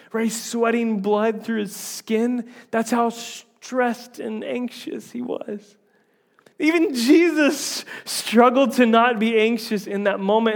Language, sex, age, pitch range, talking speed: English, male, 30-49, 165-225 Hz, 130 wpm